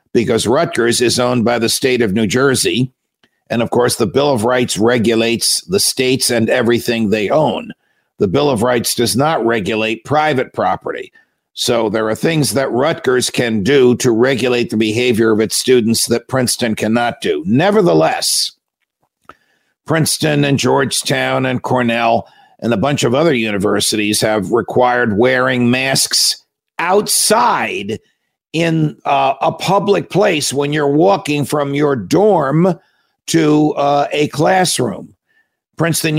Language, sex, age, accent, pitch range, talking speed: English, male, 50-69, American, 120-160 Hz, 140 wpm